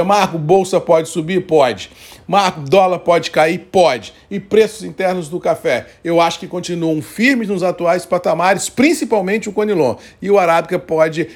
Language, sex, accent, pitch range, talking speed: Portuguese, male, Brazilian, 150-180 Hz, 160 wpm